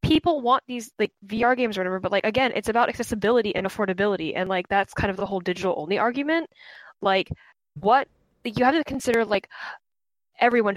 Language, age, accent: English, 10-29, American